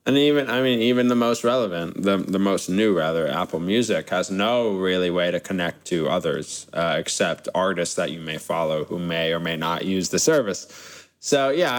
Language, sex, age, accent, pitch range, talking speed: English, male, 20-39, American, 100-145 Hz, 205 wpm